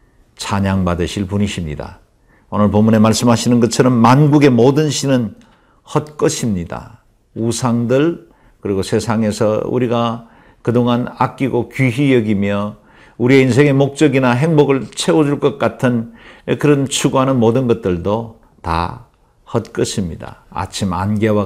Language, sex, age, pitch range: Korean, male, 50-69, 105-140 Hz